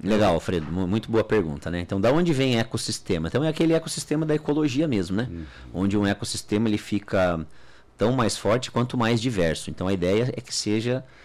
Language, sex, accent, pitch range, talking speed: Portuguese, male, Brazilian, 85-120 Hz, 190 wpm